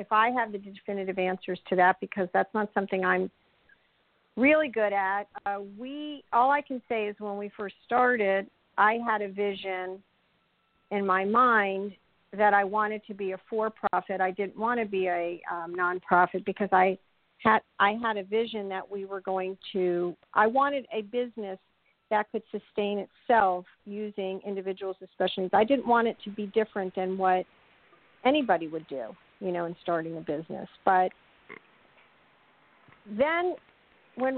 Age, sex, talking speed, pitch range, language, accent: 50-69, female, 160 wpm, 185-215 Hz, English, American